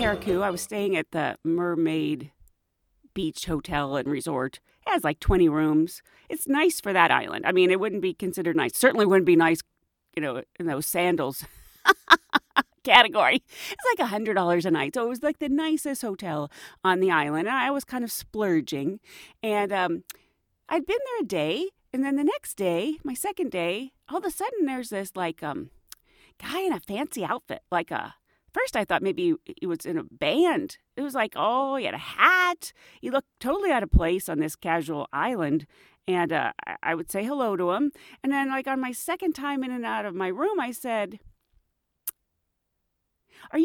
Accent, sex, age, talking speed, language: American, female, 40-59, 190 wpm, English